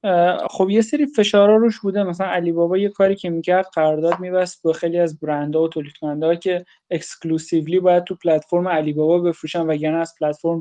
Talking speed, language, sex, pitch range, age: 190 wpm, Persian, male, 160-185 Hz, 20-39